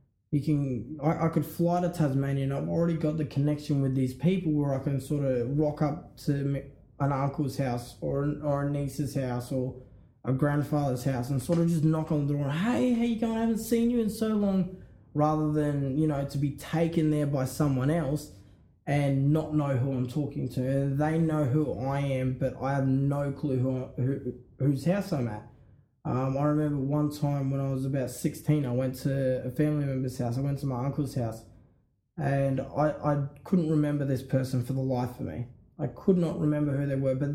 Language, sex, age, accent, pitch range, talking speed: English, male, 20-39, Australian, 130-155 Hz, 215 wpm